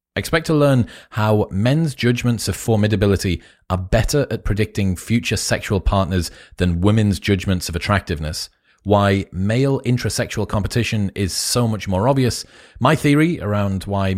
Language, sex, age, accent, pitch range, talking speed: English, male, 30-49, British, 95-115 Hz, 140 wpm